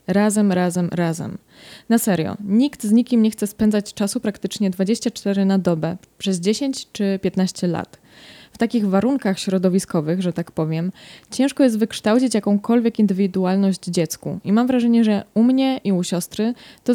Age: 20-39